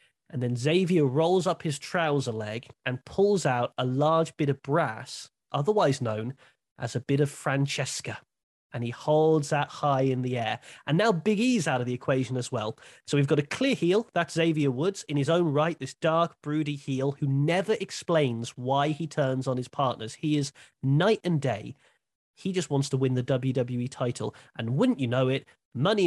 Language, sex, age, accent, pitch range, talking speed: English, male, 30-49, British, 130-170 Hz, 200 wpm